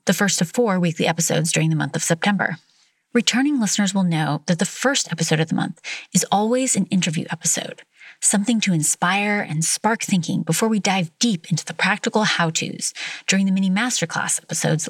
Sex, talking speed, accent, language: female, 185 wpm, American, English